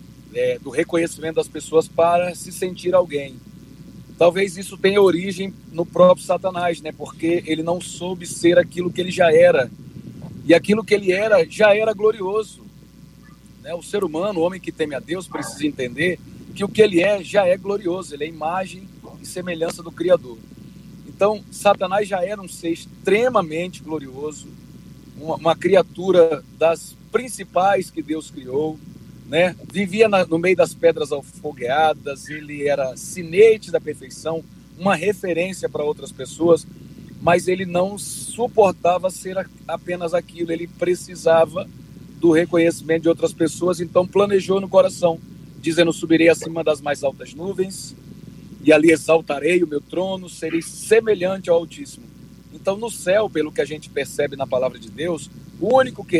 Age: 40-59